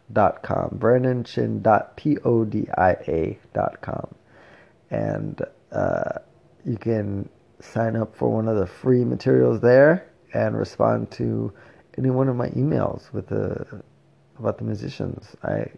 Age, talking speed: 20-39, 115 wpm